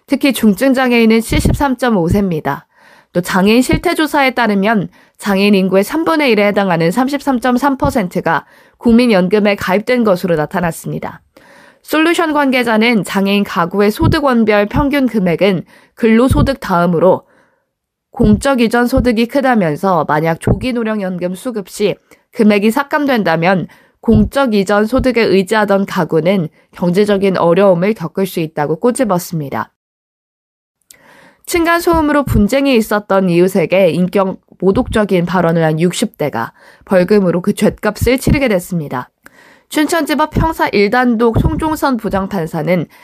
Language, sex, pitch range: Korean, female, 185-250 Hz